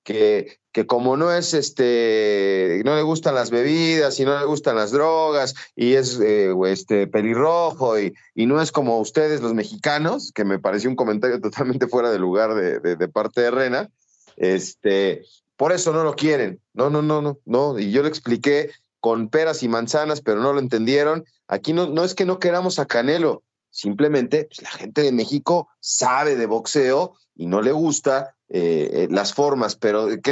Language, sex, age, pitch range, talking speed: Spanish, male, 30-49, 115-155 Hz, 190 wpm